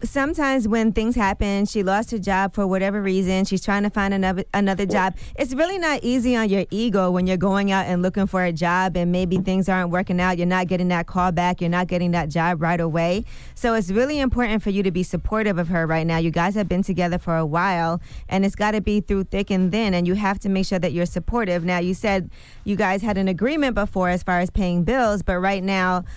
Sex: female